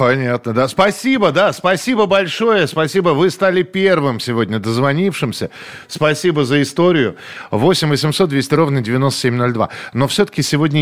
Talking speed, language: 130 wpm, Russian